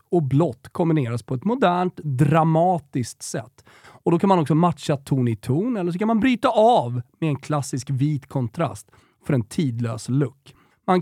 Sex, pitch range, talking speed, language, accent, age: male, 125-190 Hz, 180 wpm, Swedish, native, 30-49